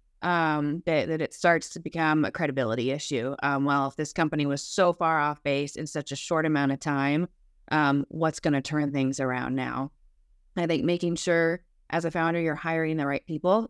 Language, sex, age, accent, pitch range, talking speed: English, female, 30-49, American, 145-175 Hz, 205 wpm